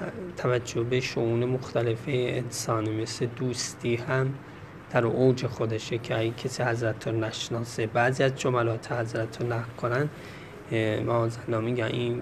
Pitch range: 120-140 Hz